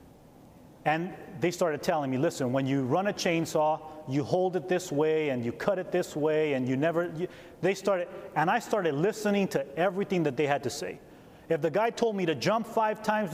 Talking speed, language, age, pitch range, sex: 210 wpm, English, 30-49, 160-210 Hz, male